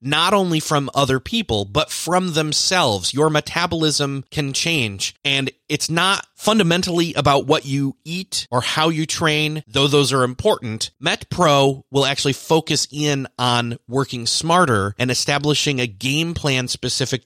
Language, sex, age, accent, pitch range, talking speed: English, male, 30-49, American, 110-150 Hz, 145 wpm